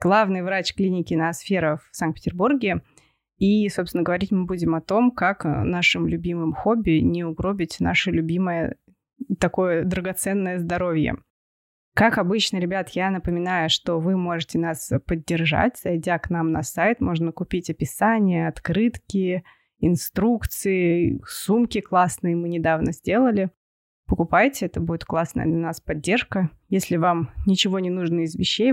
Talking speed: 130 wpm